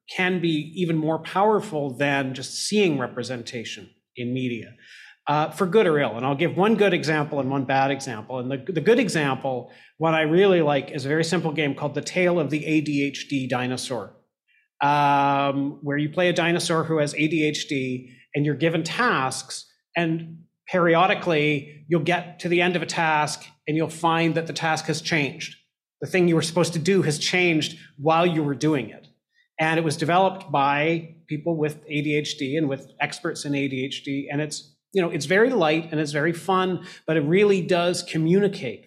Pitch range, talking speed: 140-170 Hz, 185 wpm